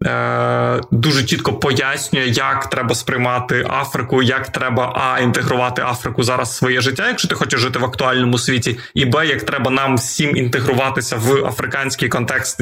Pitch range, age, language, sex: 125-140 Hz, 20-39, Ukrainian, male